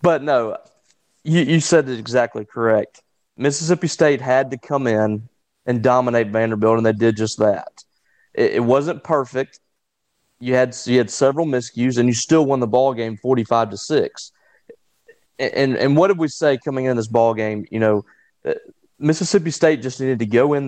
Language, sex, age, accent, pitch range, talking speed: English, male, 30-49, American, 115-145 Hz, 185 wpm